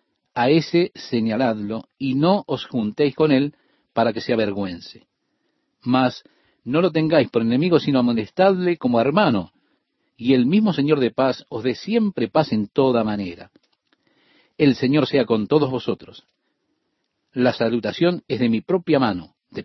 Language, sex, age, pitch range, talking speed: Spanish, male, 50-69, 115-170 Hz, 155 wpm